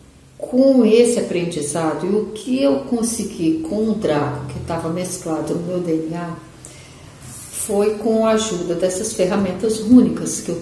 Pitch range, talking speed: 160-220 Hz, 145 wpm